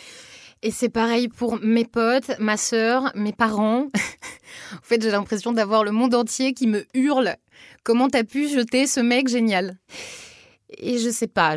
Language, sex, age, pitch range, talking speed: French, female, 20-39, 170-230 Hz, 165 wpm